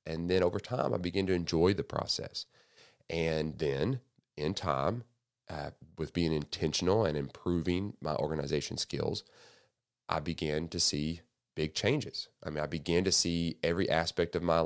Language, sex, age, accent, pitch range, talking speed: English, male, 30-49, American, 75-95 Hz, 160 wpm